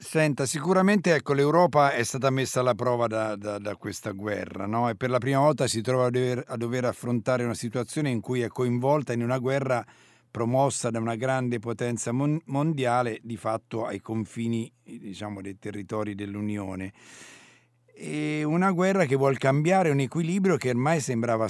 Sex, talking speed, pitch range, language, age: male, 175 wpm, 115-140 Hz, Italian, 50-69